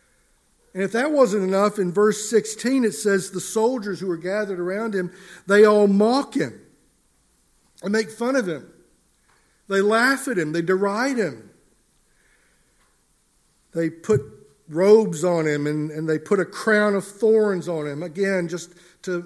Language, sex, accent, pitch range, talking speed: English, male, American, 155-200 Hz, 160 wpm